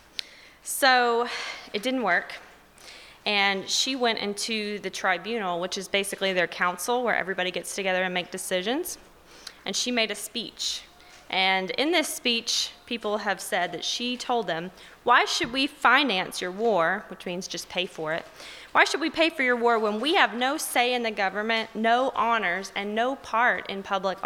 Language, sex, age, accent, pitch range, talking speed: English, female, 20-39, American, 190-245 Hz, 180 wpm